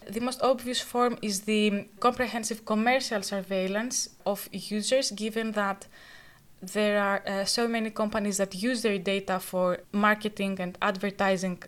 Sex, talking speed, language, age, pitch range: female, 140 wpm, English, 20-39, 200-230 Hz